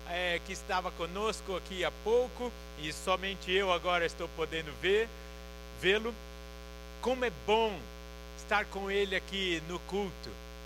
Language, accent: Portuguese, Brazilian